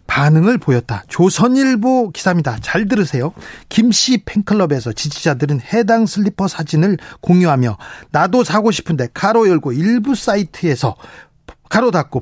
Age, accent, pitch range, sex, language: 40-59, native, 145-220 Hz, male, Korean